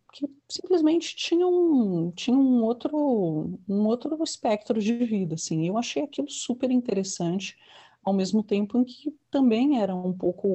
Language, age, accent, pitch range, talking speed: Portuguese, 40-59, Brazilian, 175-240 Hz, 155 wpm